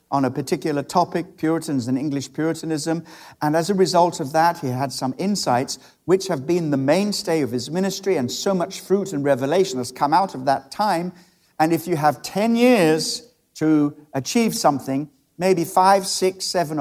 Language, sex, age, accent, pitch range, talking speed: English, male, 60-79, British, 145-205 Hz, 180 wpm